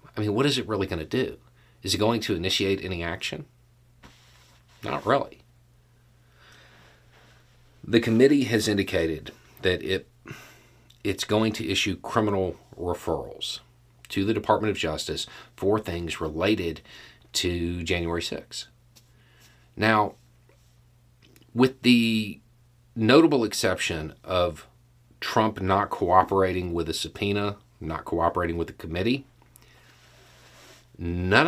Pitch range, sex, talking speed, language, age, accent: 90-120 Hz, male, 110 wpm, English, 40-59, American